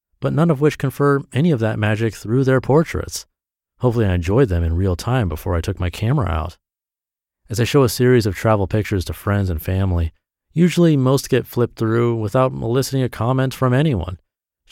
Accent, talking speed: American, 200 wpm